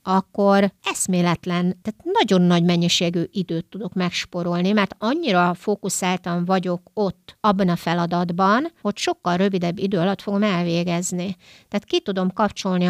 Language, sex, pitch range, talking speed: Hungarian, female, 175-210 Hz, 130 wpm